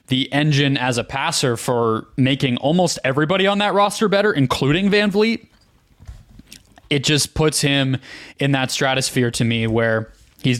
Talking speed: 155 wpm